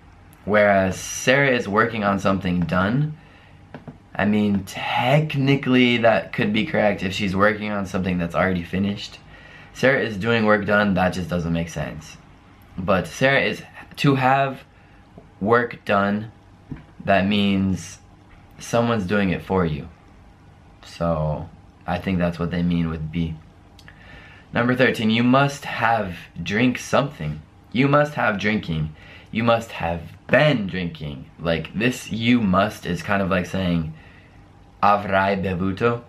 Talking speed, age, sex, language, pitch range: 135 wpm, 20-39, male, Italian, 90-115 Hz